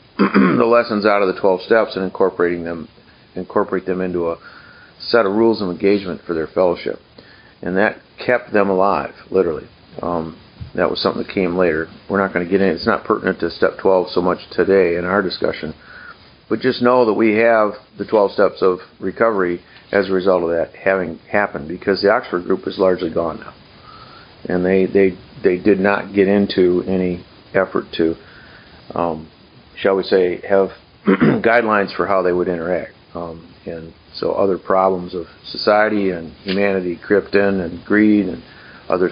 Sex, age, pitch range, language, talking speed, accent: male, 50-69, 90-105 Hz, English, 175 wpm, American